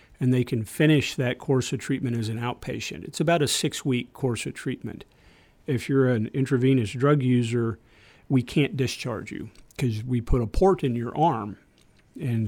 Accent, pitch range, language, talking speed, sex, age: American, 120-135 Hz, English, 180 wpm, male, 50-69